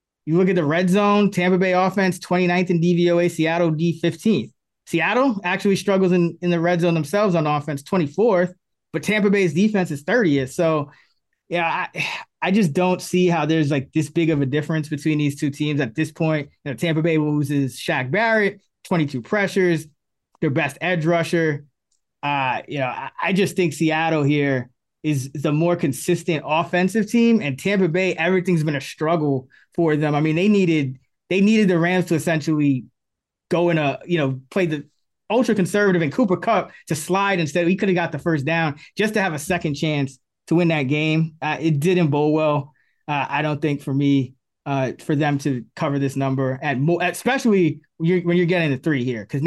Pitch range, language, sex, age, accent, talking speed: 150-180 Hz, English, male, 20-39, American, 195 wpm